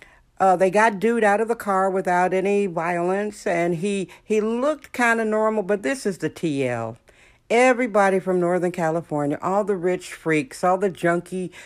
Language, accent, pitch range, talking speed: English, American, 175-205 Hz, 175 wpm